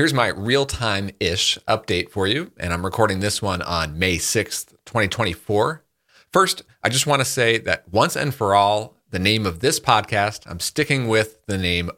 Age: 40-59